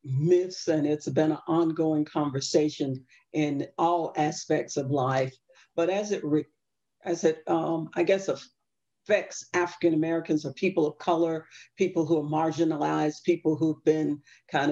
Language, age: English, 50-69